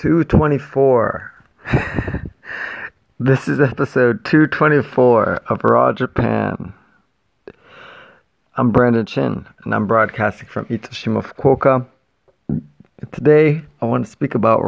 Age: 30-49